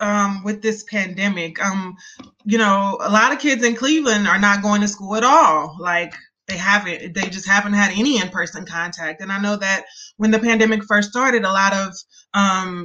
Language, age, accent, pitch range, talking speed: English, 20-39, American, 195-235 Hz, 200 wpm